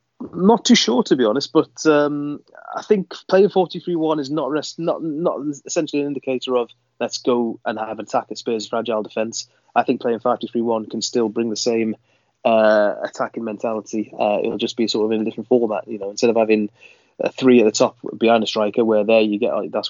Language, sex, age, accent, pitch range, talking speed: English, male, 20-39, British, 105-125 Hz, 220 wpm